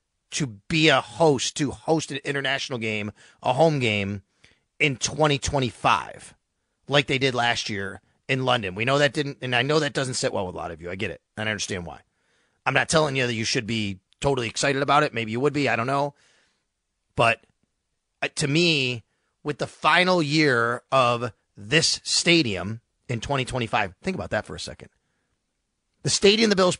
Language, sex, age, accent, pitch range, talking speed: English, male, 30-49, American, 115-155 Hz, 190 wpm